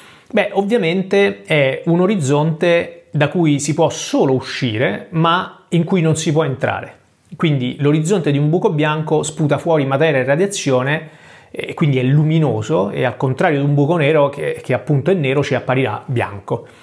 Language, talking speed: Italian, 170 wpm